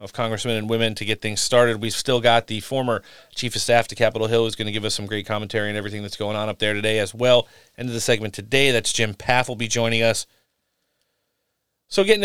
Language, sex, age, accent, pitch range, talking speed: English, male, 30-49, American, 105-125 Hz, 250 wpm